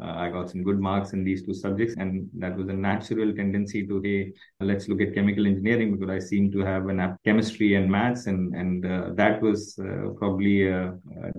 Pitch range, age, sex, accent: 100-110 Hz, 20-39, male, Indian